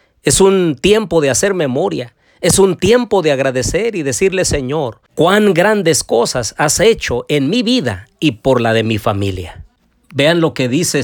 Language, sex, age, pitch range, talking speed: Spanish, male, 40-59, 120-170 Hz, 175 wpm